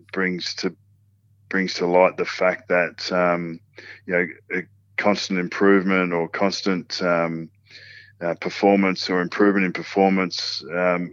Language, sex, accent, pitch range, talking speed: English, male, Australian, 90-100 Hz, 130 wpm